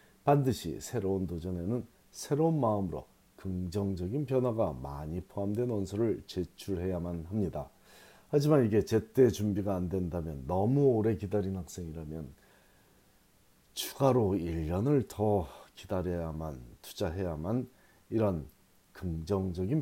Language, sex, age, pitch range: Korean, male, 40-59, 90-125 Hz